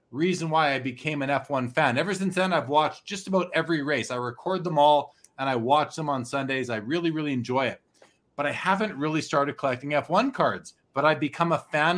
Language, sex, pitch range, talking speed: English, male, 130-170 Hz, 220 wpm